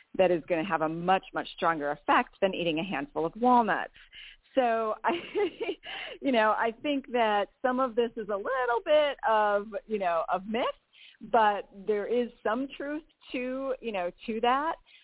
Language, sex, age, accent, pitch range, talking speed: English, female, 40-59, American, 180-230 Hz, 180 wpm